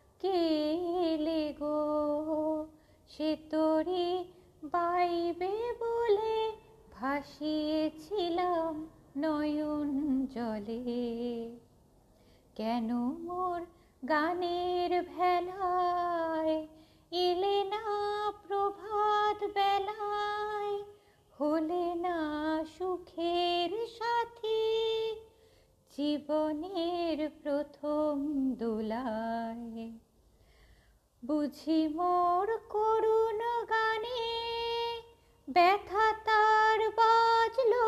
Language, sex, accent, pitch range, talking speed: Bengali, female, native, 295-400 Hz, 35 wpm